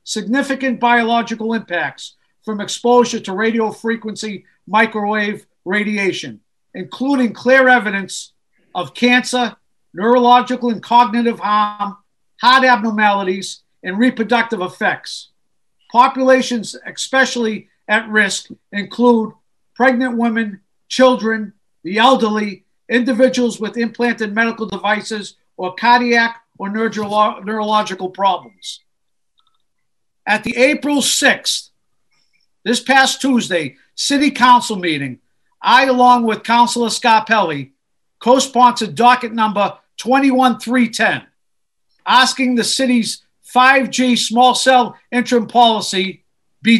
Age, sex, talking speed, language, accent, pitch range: 50-69, male, 90 wpm, English, American, 205-250 Hz